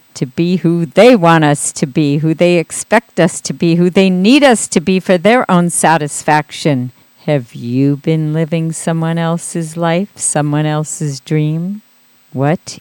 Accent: American